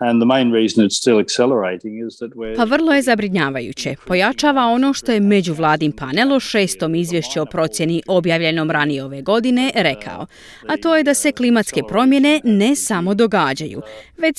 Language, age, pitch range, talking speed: Croatian, 30-49, 165-260 Hz, 130 wpm